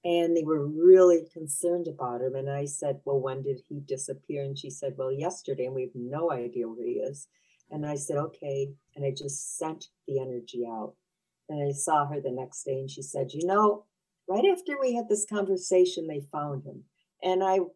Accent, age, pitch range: American, 60-79, 135-185 Hz